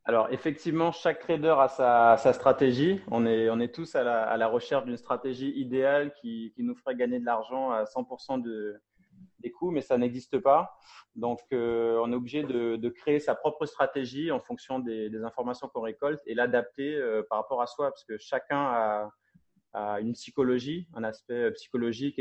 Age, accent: 30-49, French